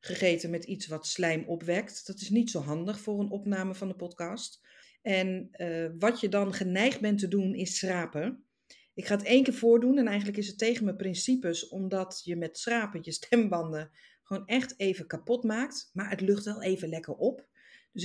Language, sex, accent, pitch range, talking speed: Dutch, female, Dutch, 175-230 Hz, 200 wpm